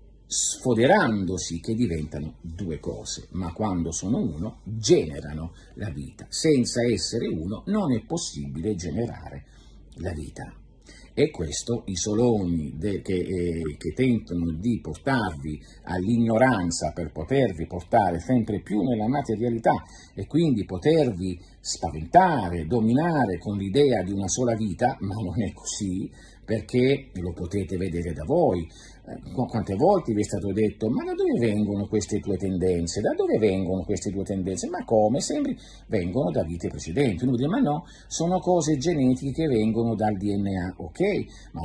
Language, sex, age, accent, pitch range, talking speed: Italian, male, 50-69, native, 85-120 Hz, 140 wpm